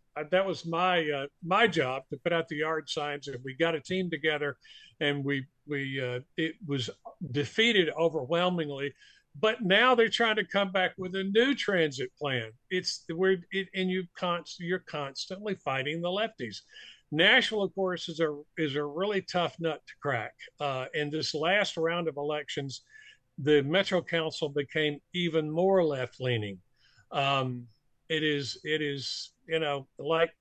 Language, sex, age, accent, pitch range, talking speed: English, male, 50-69, American, 145-180 Hz, 165 wpm